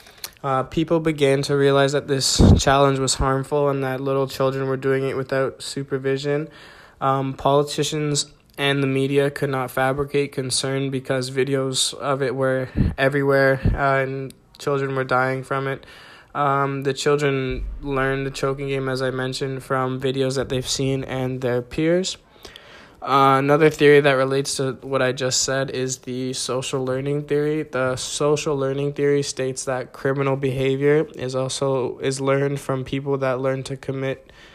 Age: 20-39